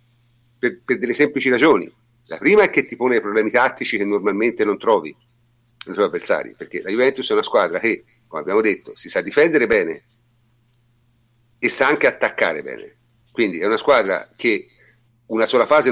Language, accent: Italian, native